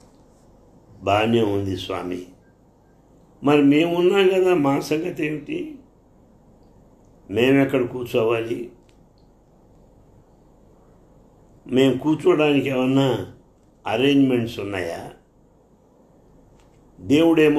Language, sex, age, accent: English, male, 60-79, Indian